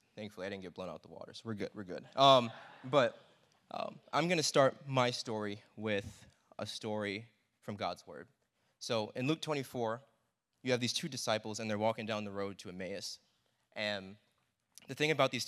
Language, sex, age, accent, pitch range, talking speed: English, male, 20-39, American, 100-125 Hz, 200 wpm